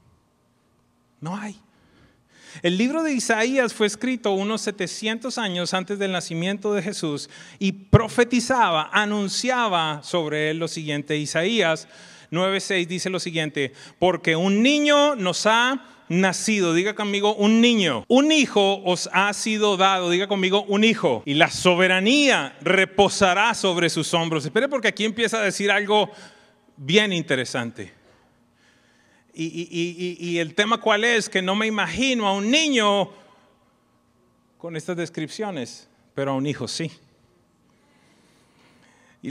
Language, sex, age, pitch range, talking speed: English, male, 30-49, 165-215 Hz, 135 wpm